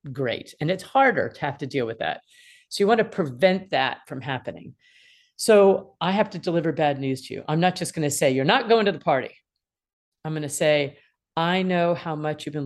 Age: 40-59